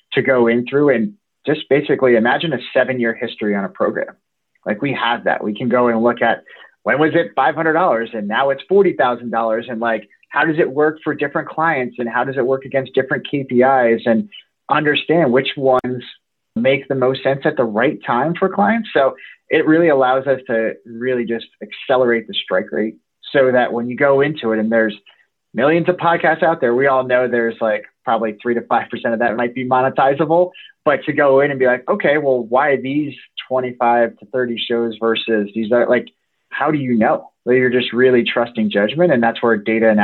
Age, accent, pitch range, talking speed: 30-49, American, 115-135 Hz, 205 wpm